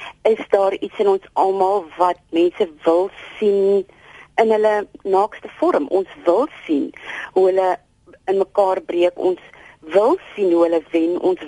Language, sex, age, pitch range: Dutch, female, 30-49, 165-235 Hz